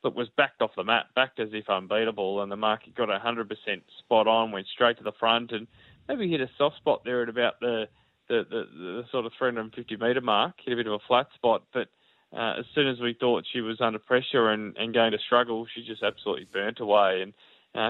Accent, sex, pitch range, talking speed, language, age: Australian, male, 110-120 Hz, 235 wpm, English, 20-39